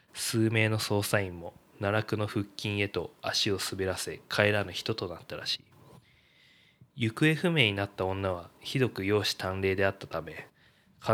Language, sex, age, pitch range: Japanese, male, 20-39, 100-115 Hz